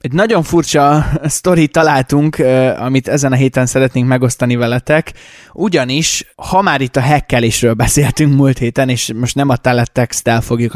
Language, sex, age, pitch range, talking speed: Hungarian, male, 20-39, 125-155 Hz, 150 wpm